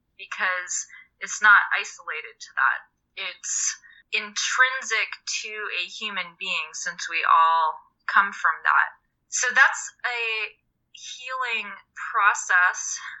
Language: English